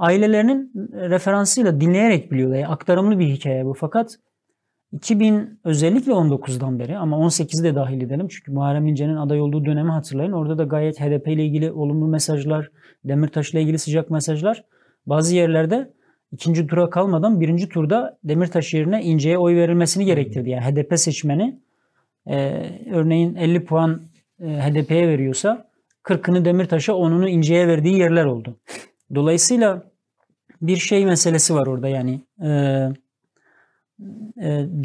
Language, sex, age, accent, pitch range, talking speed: Turkish, male, 40-59, native, 145-180 Hz, 135 wpm